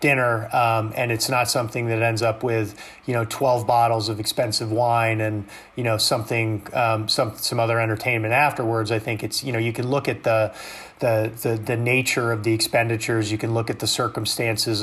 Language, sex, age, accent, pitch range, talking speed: English, male, 30-49, American, 110-135 Hz, 200 wpm